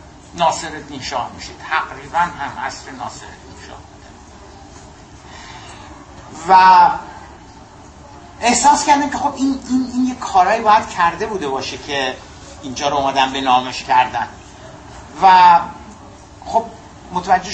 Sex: male